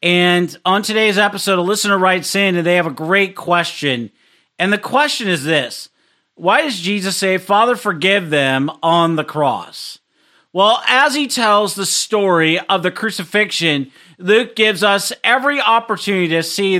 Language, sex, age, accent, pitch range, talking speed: English, male, 40-59, American, 175-225 Hz, 160 wpm